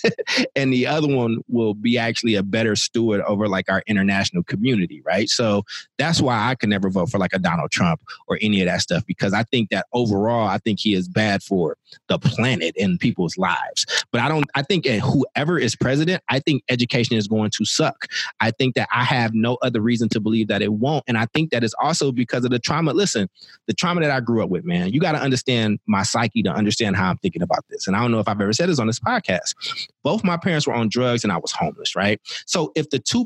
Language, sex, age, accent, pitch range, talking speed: English, male, 30-49, American, 110-150 Hz, 245 wpm